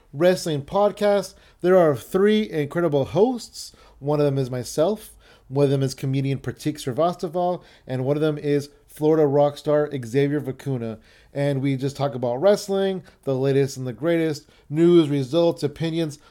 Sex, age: male, 30-49